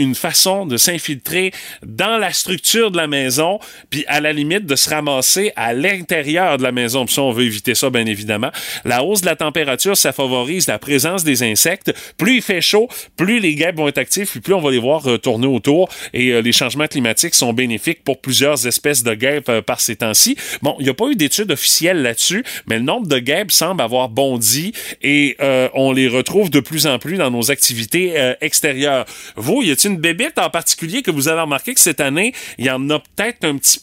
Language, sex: French, male